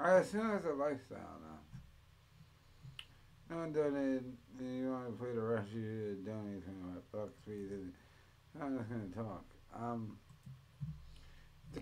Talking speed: 150 wpm